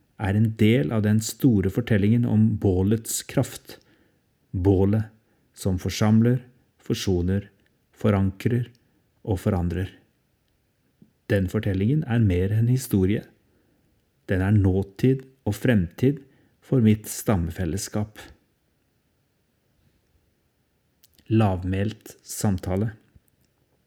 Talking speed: 90 wpm